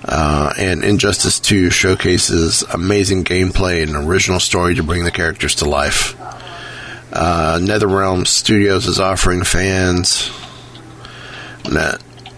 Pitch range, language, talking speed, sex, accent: 85-100 Hz, English, 110 wpm, male, American